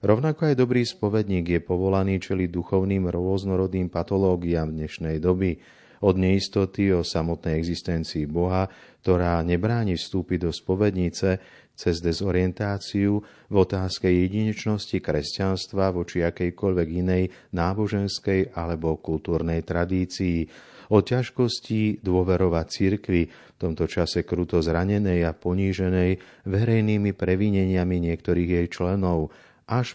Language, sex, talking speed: Slovak, male, 105 wpm